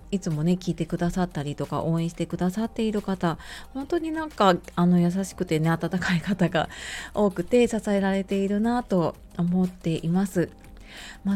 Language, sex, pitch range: Japanese, female, 170-225 Hz